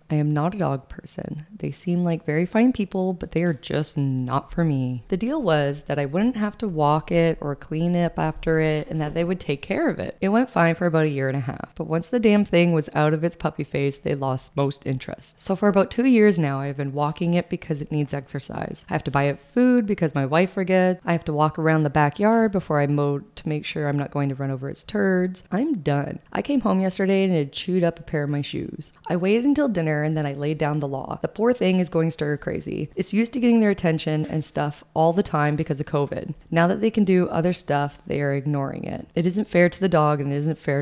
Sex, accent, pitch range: female, American, 145-185 Hz